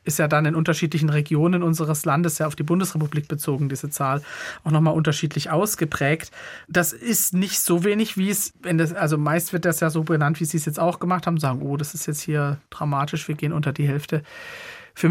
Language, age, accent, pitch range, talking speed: German, 40-59, German, 150-180 Hz, 220 wpm